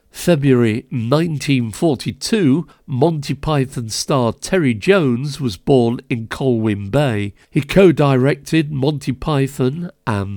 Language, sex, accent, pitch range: English, male, British, 120-155 Hz